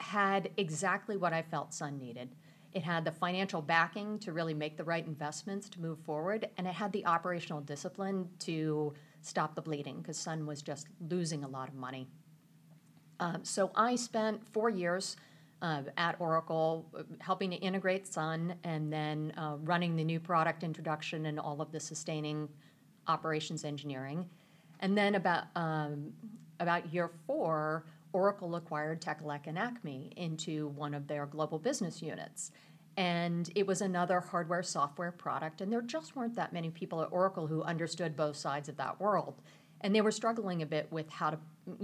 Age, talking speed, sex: 50-69, 170 wpm, female